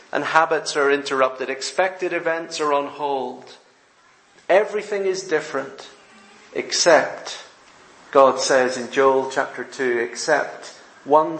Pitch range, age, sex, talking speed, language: 135-165 Hz, 40-59, male, 110 wpm, English